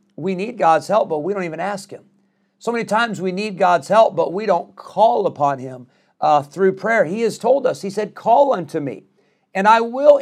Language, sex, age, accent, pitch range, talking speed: English, male, 50-69, American, 140-195 Hz, 225 wpm